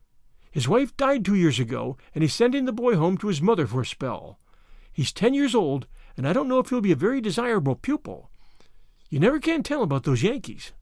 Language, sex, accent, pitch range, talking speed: English, male, American, 150-225 Hz, 220 wpm